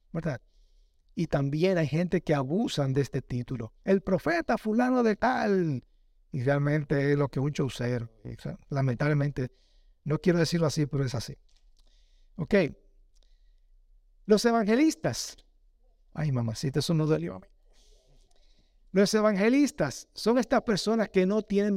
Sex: male